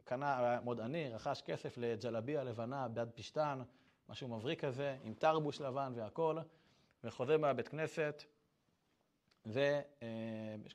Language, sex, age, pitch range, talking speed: Hebrew, male, 30-49, 130-160 Hz, 110 wpm